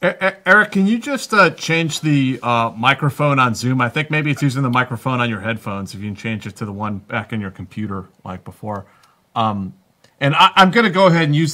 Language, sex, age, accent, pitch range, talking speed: English, male, 30-49, American, 115-140 Hz, 235 wpm